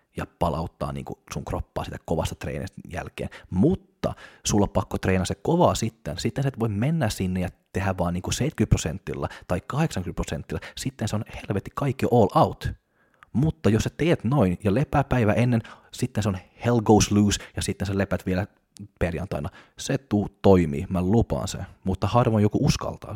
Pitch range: 90-105 Hz